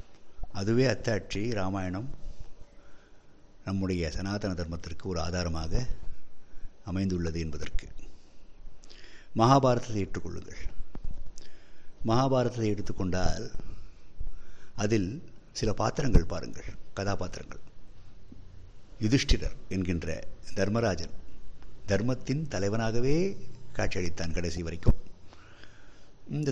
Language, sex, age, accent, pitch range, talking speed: Tamil, male, 60-79, native, 90-115 Hz, 65 wpm